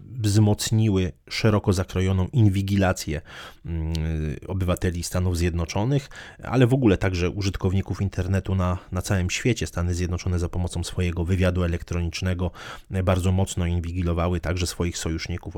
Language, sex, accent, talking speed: Polish, male, native, 115 wpm